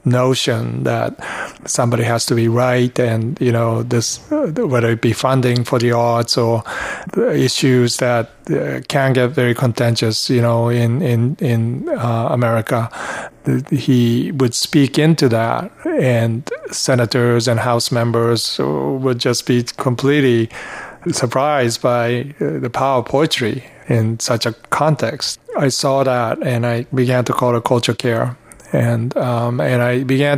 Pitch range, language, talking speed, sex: 120-130 Hz, English, 150 wpm, male